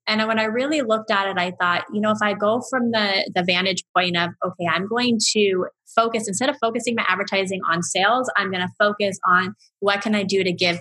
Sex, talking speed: female, 240 wpm